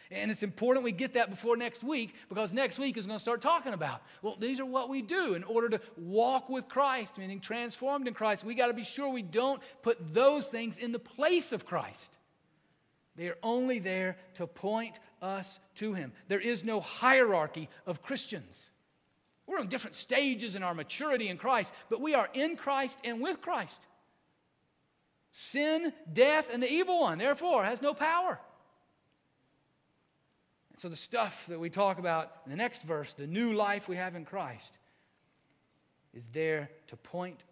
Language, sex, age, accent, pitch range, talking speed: English, male, 40-59, American, 155-245 Hz, 180 wpm